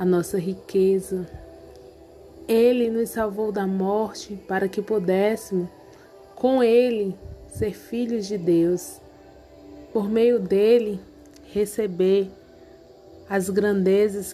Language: Portuguese